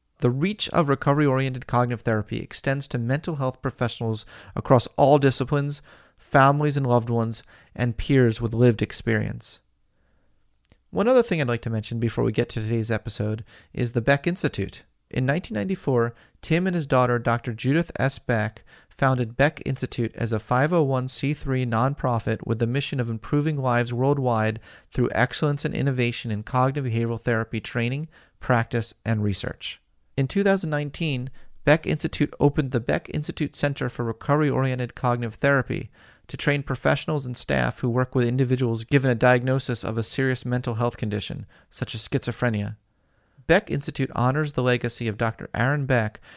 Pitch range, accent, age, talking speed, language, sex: 115-140 Hz, American, 30-49, 155 wpm, English, male